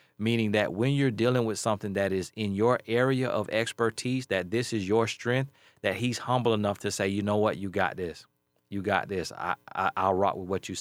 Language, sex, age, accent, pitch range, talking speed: English, male, 30-49, American, 95-115 Hz, 230 wpm